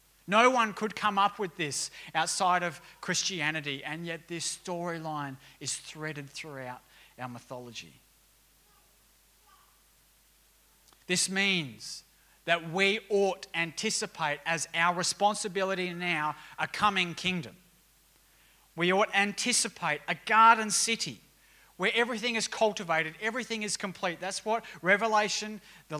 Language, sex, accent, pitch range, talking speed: English, male, Australian, 170-215 Hz, 115 wpm